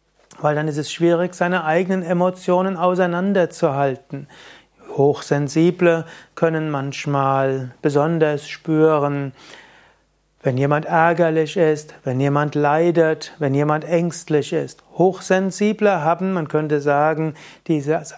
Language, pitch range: German, 150-175 Hz